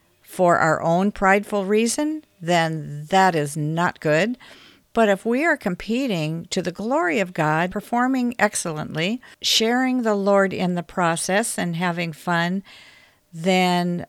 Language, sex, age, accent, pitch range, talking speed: English, female, 50-69, American, 155-205 Hz, 135 wpm